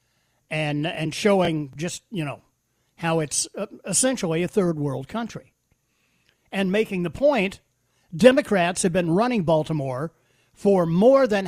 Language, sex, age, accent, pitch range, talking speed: English, male, 50-69, American, 140-220 Hz, 125 wpm